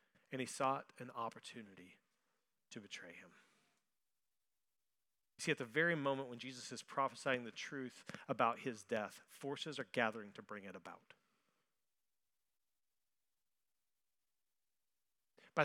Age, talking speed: 30-49, 120 wpm